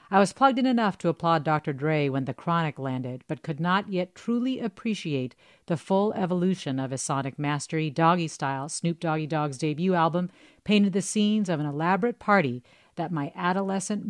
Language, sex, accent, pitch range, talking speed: English, female, American, 150-195 Hz, 185 wpm